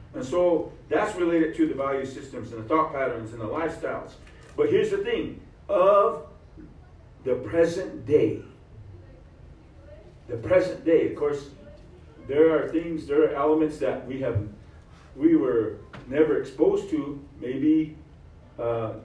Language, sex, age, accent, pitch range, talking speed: English, male, 50-69, American, 105-155 Hz, 140 wpm